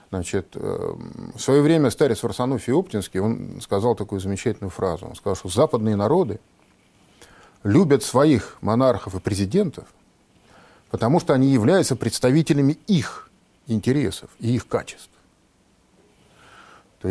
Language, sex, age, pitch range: Russian, male, 40-59, 100-135 Hz